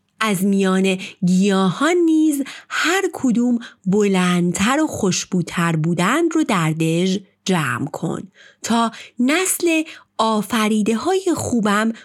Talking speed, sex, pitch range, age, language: 100 wpm, female, 180-250 Hz, 30-49, Persian